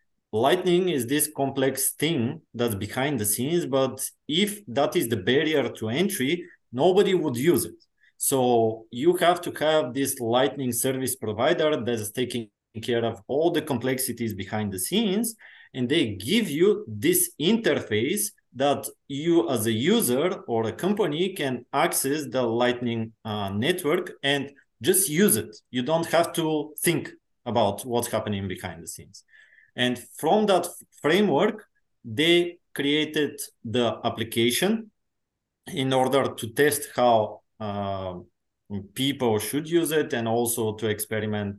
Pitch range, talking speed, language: 110-145 Hz, 140 wpm, English